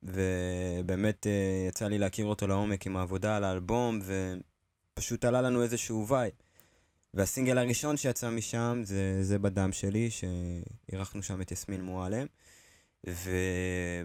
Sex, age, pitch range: male, 20-39, 95-115 Hz